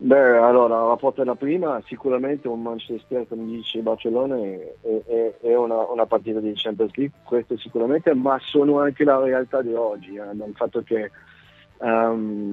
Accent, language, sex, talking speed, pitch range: native, Italian, male, 170 wpm, 110-125 Hz